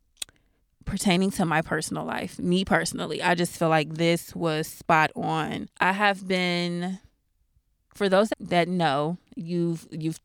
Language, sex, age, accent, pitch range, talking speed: English, female, 20-39, American, 165-195 Hz, 140 wpm